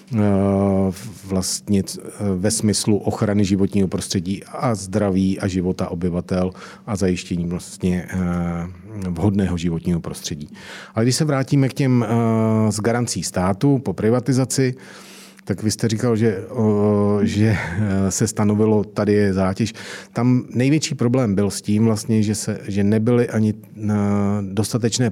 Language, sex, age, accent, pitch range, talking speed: Czech, male, 40-59, native, 100-115 Hz, 110 wpm